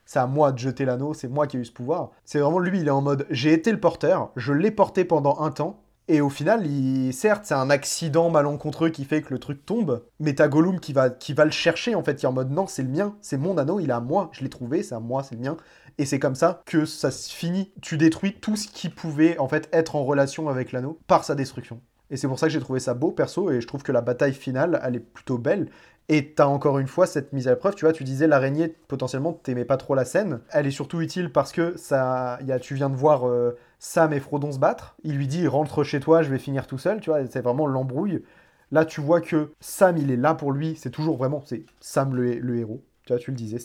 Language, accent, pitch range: French, French, 130-160 Hz